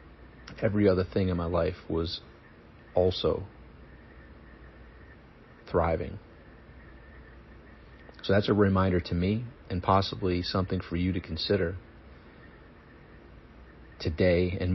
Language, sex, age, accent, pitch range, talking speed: English, male, 40-59, American, 80-95 Hz, 100 wpm